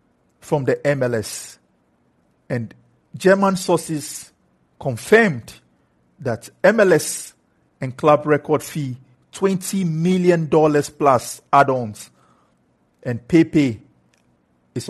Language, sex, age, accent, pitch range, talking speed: English, male, 50-69, Nigerian, 115-155 Hz, 85 wpm